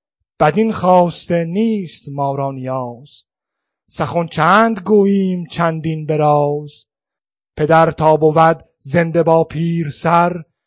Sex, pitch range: male, 140-180 Hz